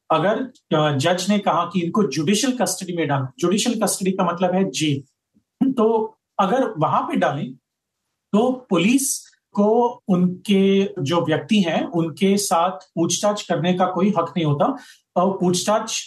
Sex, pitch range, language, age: male, 160-205 Hz, Hindi, 30-49